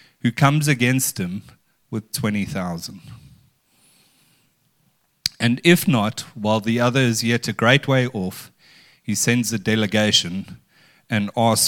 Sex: male